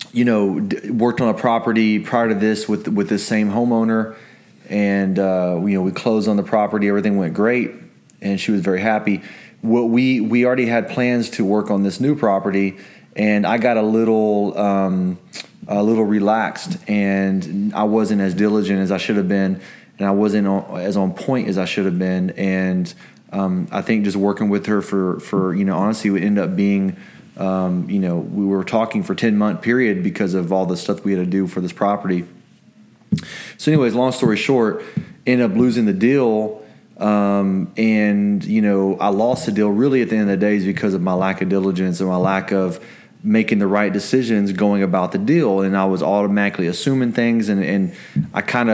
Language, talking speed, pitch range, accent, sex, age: English, 205 wpm, 95-110 Hz, American, male, 30-49